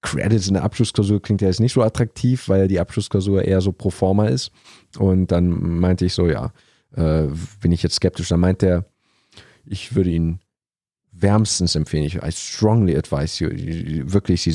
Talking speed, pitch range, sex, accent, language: 180 wpm, 90-115 Hz, male, German, German